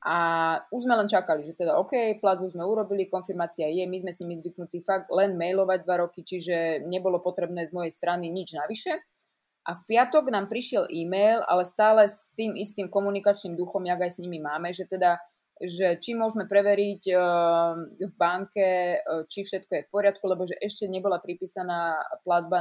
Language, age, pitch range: Slovak, 20-39, 170-200 Hz